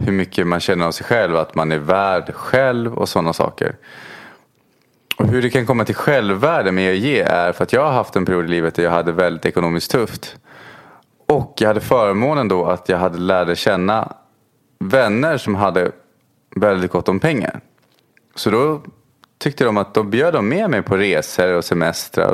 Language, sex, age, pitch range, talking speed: English, male, 20-39, 90-125 Hz, 190 wpm